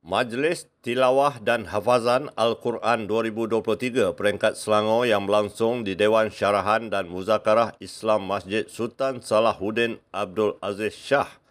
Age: 50-69